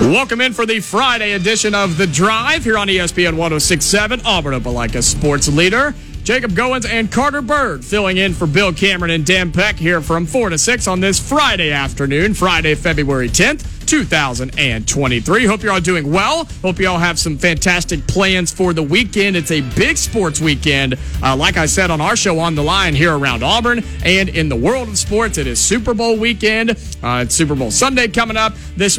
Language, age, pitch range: English, 40-59, 150-205 Hz